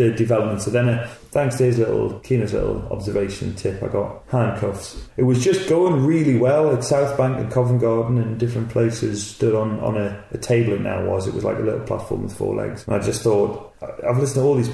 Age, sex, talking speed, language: 30-49, male, 230 wpm, English